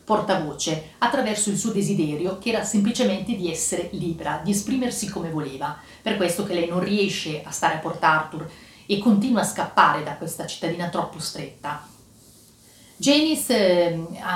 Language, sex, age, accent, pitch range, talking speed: Italian, female, 40-59, native, 165-215 Hz, 160 wpm